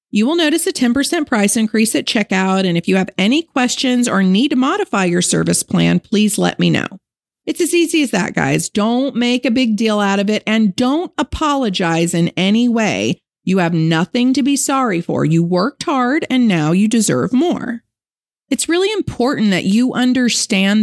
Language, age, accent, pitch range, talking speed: English, 40-59, American, 200-270 Hz, 195 wpm